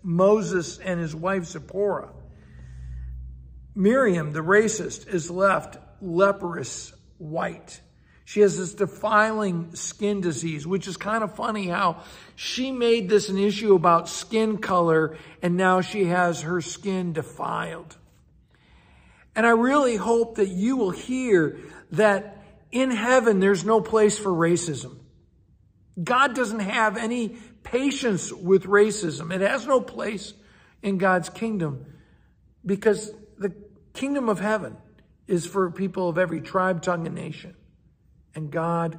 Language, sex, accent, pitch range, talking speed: English, male, American, 170-215 Hz, 130 wpm